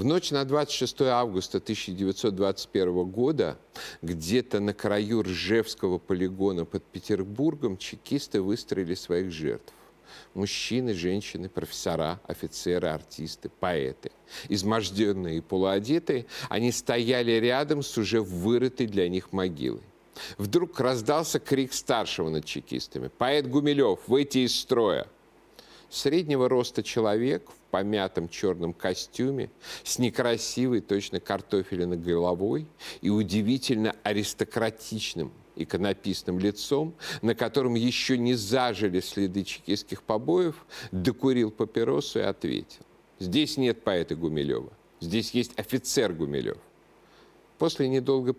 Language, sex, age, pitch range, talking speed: Russian, male, 50-69, 95-130 Hz, 105 wpm